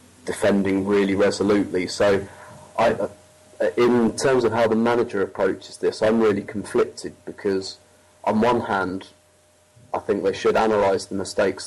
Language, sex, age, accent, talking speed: English, male, 30-49, British, 145 wpm